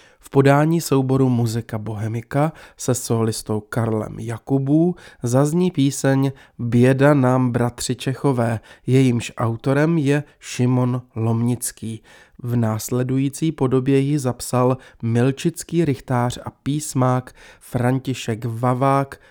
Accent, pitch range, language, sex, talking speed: native, 120-140 Hz, Czech, male, 95 wpm